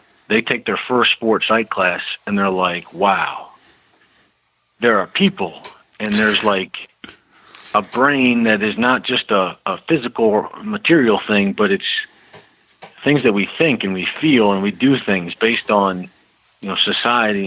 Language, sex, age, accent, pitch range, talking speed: English, male, 40-59, American, 95-115 Hz, 160 wpm